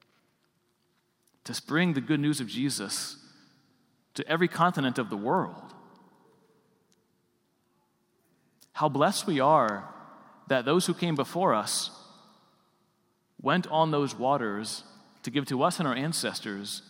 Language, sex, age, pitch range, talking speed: English, male, 40-59, 120-160 Hz, 120 wpm